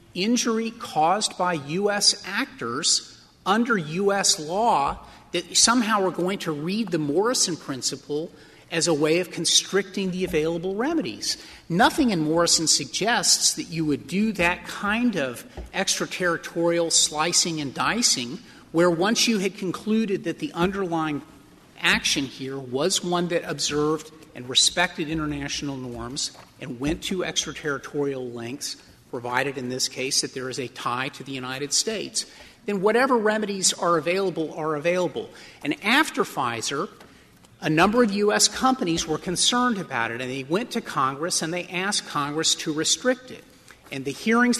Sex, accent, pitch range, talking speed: male, American, 150-200 Hz, 150 wpm